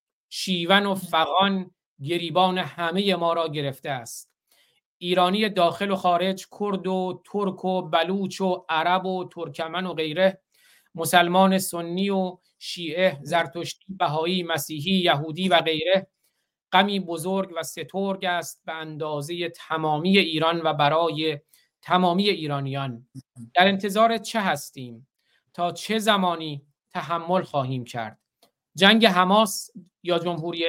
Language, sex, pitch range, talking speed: Persian, male, 160-190 Hz, 120 wpm